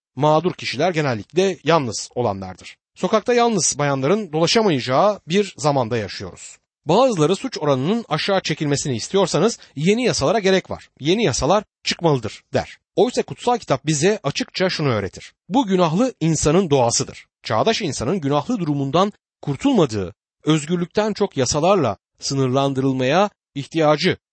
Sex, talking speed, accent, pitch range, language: male, 115 wpm, native, 130-190 Hz, Turkish